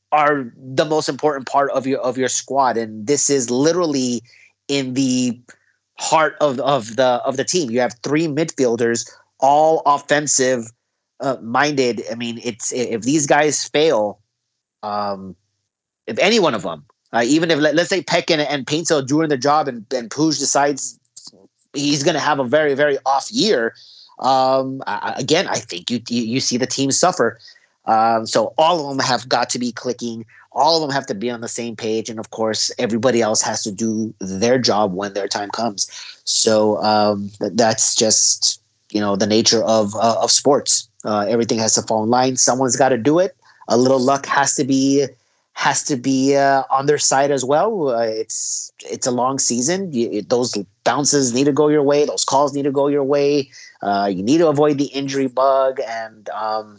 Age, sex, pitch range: 30-49, male, 115-145 Hz